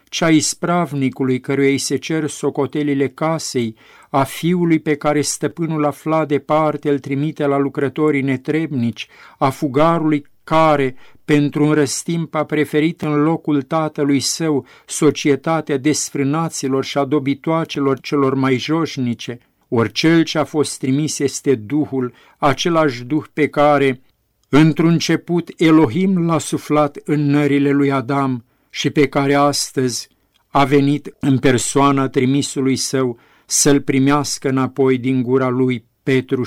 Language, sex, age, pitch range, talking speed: Romanian, male, 50-69, 130-150 Hz, 130 wpm